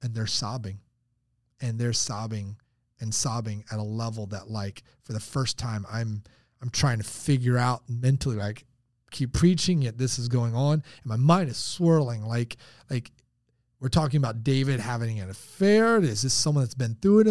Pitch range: 120-150 Hz